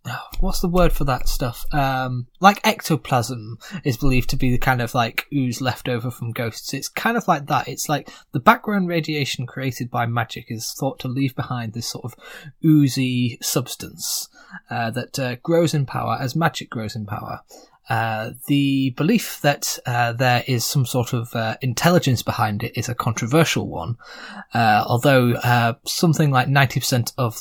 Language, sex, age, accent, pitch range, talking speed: English, male, 20-39, British, 120-145 Hz, 180 wpm